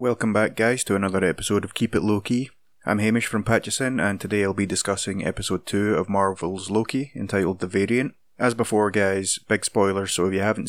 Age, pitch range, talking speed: 20-39, 95-110 Hz, 200 wpm